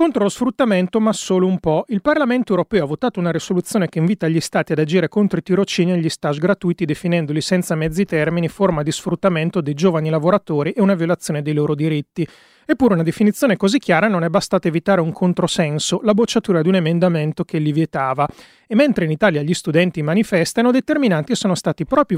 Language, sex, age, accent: Italian, male, 30-49, native